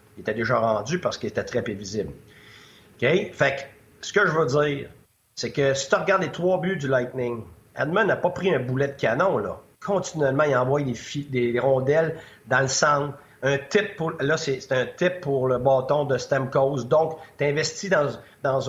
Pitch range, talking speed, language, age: 135-175 Hz, 205 wpm, French, 50-69